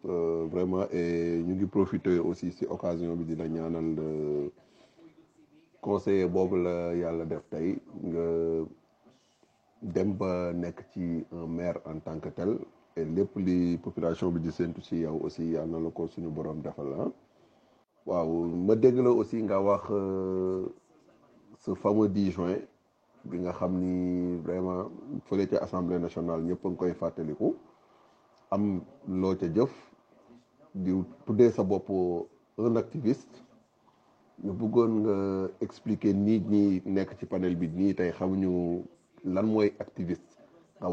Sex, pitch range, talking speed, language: male, 85-100 Hz, 110 wpm, French